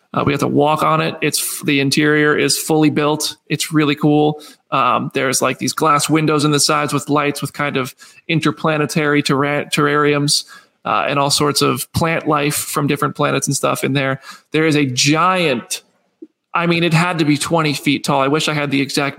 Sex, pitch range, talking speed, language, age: male, 145-160 Hz, 205 wpm, English, 20-39